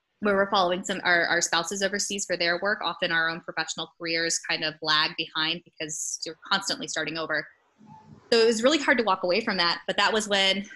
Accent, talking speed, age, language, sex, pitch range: American, 220 wpm, 20-39, English, female, 175-220 Hz